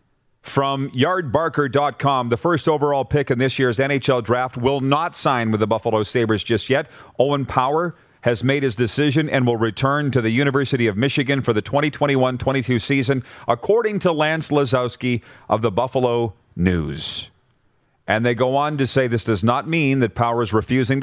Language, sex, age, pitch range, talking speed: English, male, 40-59, 115-145 Hz, 170 wpm